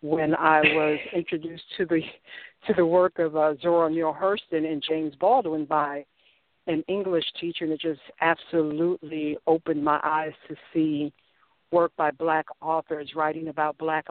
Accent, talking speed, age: American, 155 wpm, 60-79